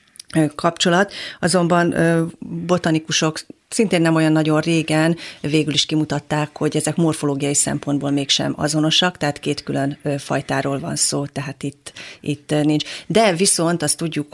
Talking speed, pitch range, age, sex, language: 130 wpm, 145-165 Hz, 40-59, female, Hungarian